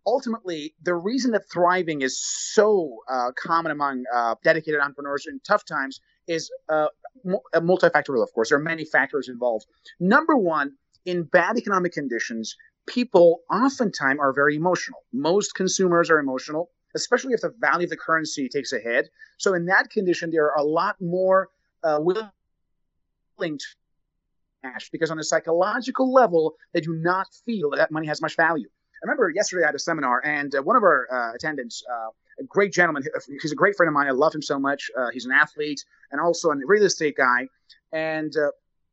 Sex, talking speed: male, 180 wpm